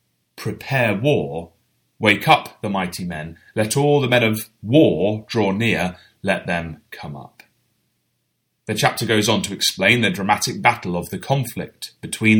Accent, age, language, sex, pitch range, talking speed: British, 30-49, English, male, 90-120 Hz, 155 wpm